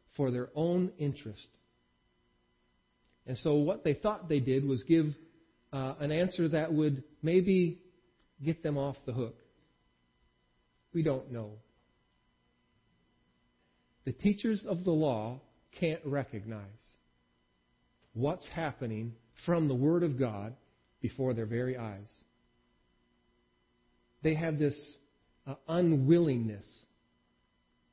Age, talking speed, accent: 40-59, 105 wpm, American